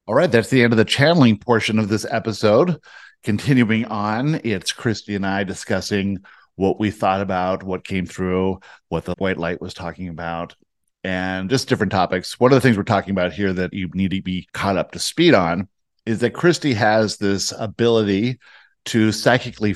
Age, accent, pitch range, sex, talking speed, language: 50-69, American, 90-110 Hz, male, 190 wpm, English